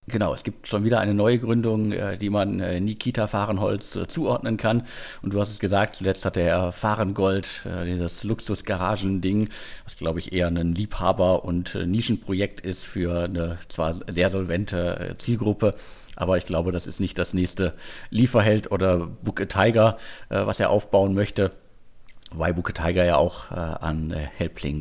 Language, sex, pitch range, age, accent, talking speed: German, male, 90-110 Hz, 50-69, German, 150 wpm